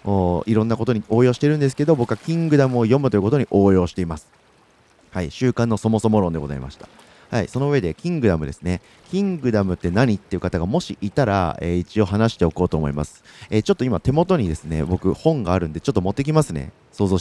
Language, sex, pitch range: Japanese, male, 85-140 Hz